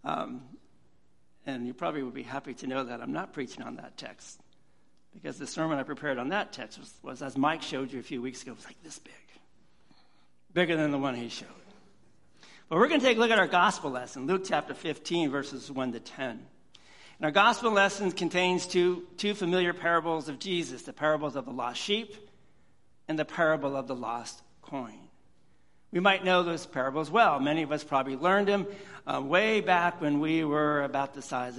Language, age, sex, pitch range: English, 60-79, male, 130-185 Hz